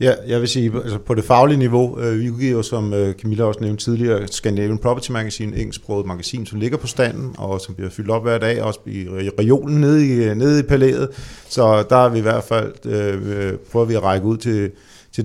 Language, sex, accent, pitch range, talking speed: Danish, male, native, 105-130 Hz, 210 wpm